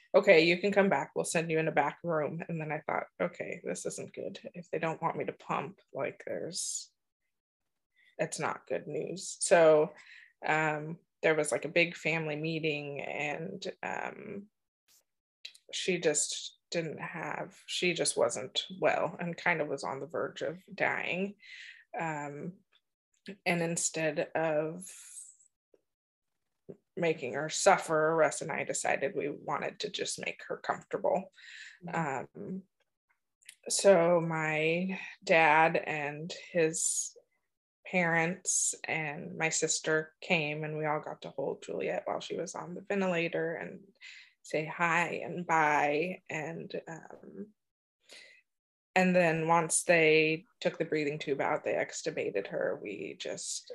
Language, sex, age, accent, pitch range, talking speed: English, female, 20-39, American, 155-200 Hz, 140 wpm